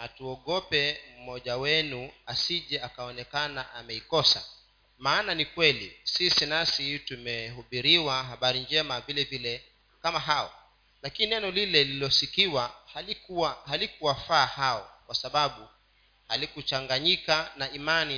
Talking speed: 100 wpm